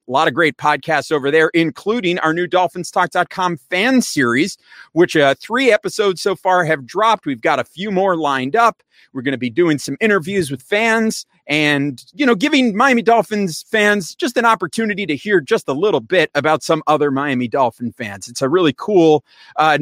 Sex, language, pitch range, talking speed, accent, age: male, English, 130-195 Hz, 195 wpm, American, 30-49